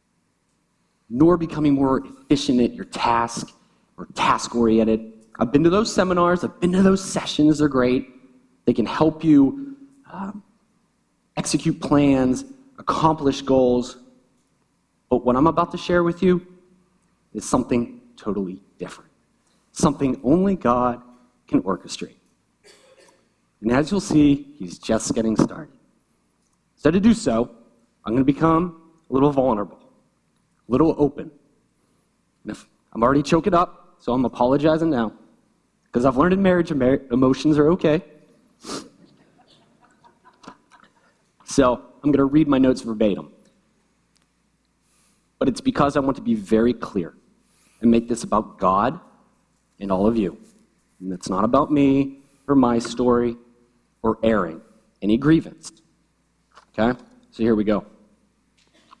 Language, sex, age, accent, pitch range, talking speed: English, male, 30-49, American, 120-170 Hz, 130 wpm